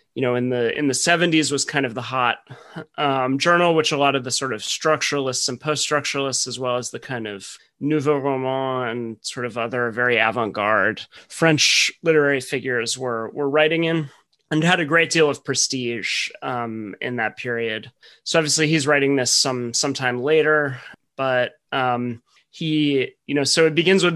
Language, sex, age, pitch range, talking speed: English, male, 30-49, 125-150 Hz, 185 wpm